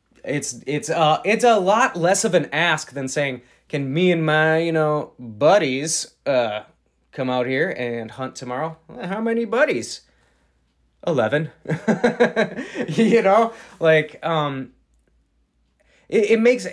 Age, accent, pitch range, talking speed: 20-39, American, 125-175 Hz, 135 wpm